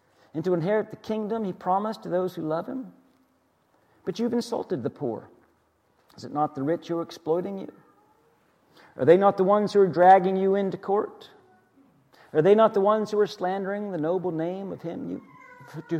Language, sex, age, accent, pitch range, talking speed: English, male, 50-69, American, 165-220 Hz, 190 wpm